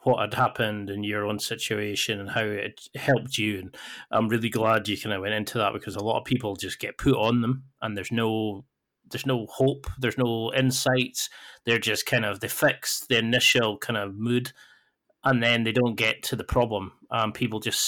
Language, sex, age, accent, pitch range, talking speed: English, male, 30-49, British, 105-125 Hz, 210 wpm